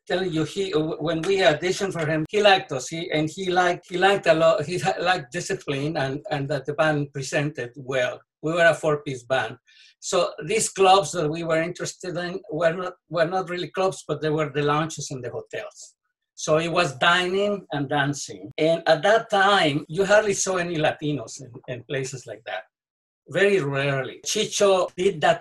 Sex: male